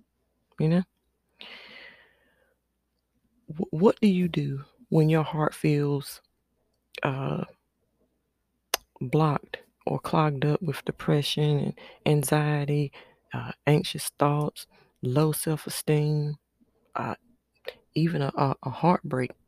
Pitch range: 145-170 Hz